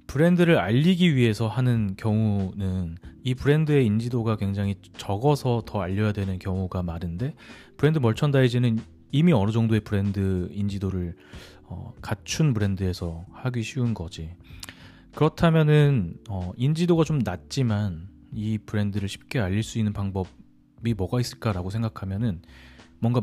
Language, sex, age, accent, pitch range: Korean, male, 30-49, native, 90-125 Hz